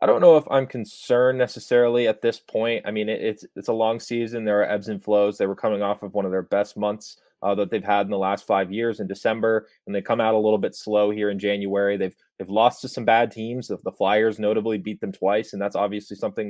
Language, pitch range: English, 100-110 Hz